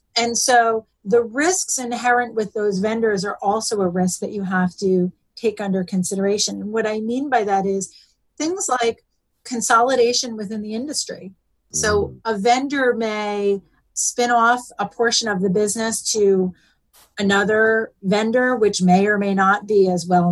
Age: 30-49